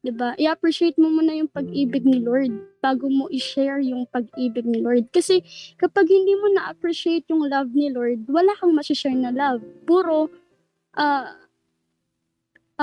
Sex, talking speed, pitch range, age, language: female, 155 wpm, 245-295 Hz, 20-39, Filipino